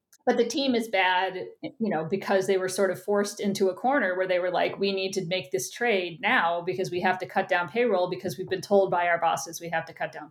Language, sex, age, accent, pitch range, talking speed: English, female, 40-59, American, 185-230 Hz, 270 wpm